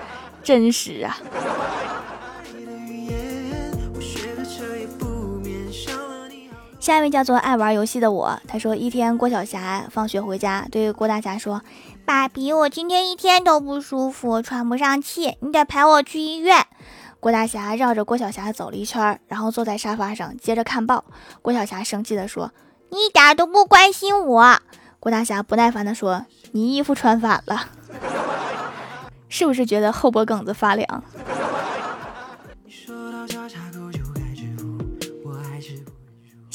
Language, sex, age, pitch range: Chinese, female, 20-39, 200-260 Hz